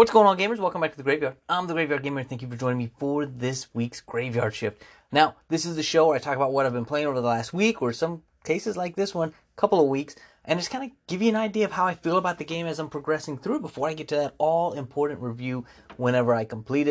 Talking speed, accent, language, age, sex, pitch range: 280 wpm, American, English, 30-49, male, 120-155 Hz